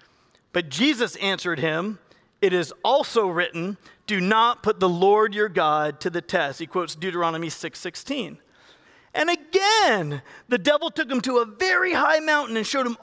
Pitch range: 180-250 Hz